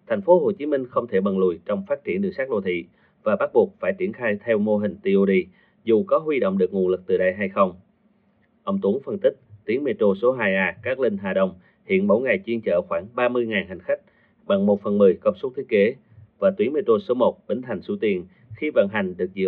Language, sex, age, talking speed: Vietnamese, male, 30-49, 240 wpm